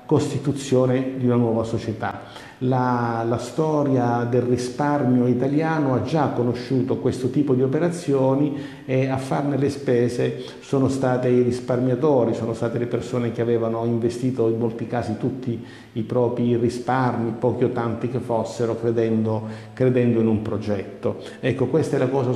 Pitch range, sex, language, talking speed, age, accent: 115-130 Hz, male, Italian, 150 wpm, 50-69, native